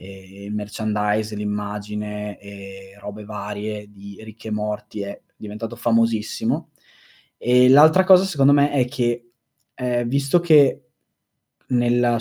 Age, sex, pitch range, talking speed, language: 20-39, male, 115-145 Hz, 115 wpm, Italian